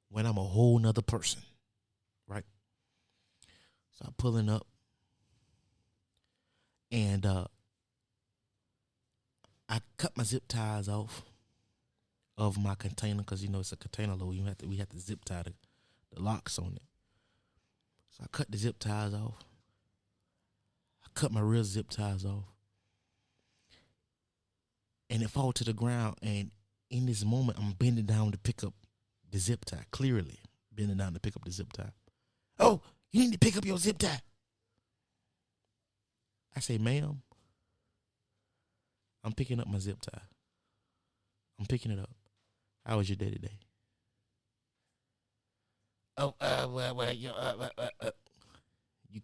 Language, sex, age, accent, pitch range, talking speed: English, male, 20-39, American, 100-115 Hz, 135 wpm